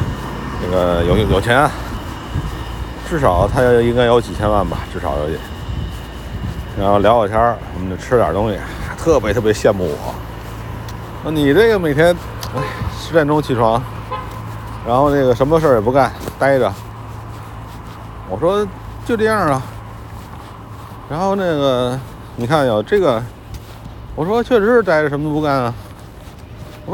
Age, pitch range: 50-69, 100-145 Hz